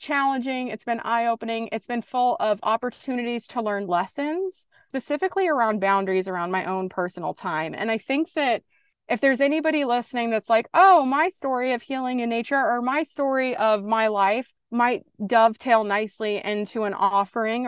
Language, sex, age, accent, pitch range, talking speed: English, female, 30-49, American, 195-245 Hz, 165 wpm